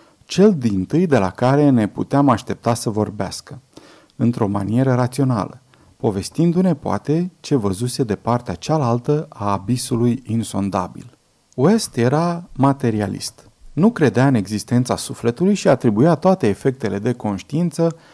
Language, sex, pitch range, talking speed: Romanian, male, 110-155 Hz, 120 wpm